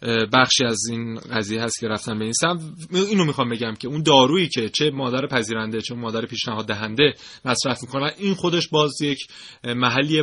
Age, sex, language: 30-49, male, Persian